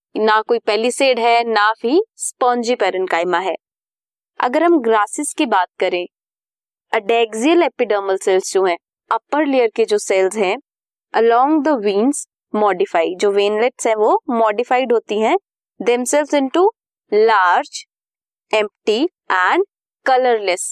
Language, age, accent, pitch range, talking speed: English, 20-39, Indian, 215-300 Hz, 125 wpm